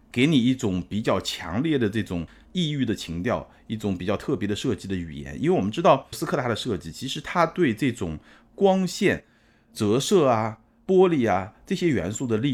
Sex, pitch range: male, 90-125 Hz